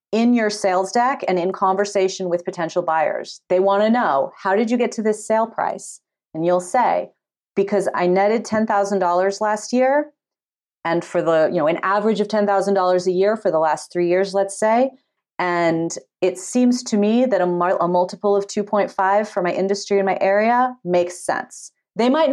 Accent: American